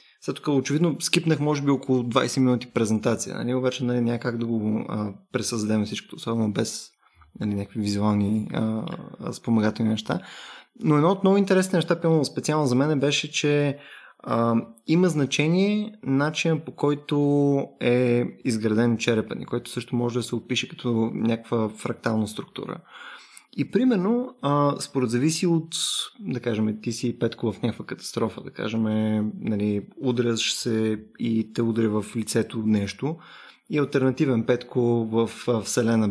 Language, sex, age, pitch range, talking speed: Bulgarian, male, 20-39, 115-150 Hz, 145 wpm